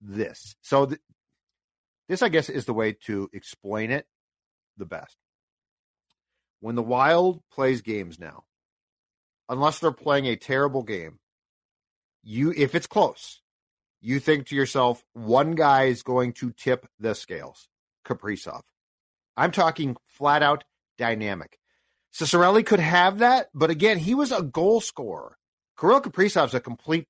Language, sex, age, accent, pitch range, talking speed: English, male, 50-69, American, 125-165 Hz, 140 wpm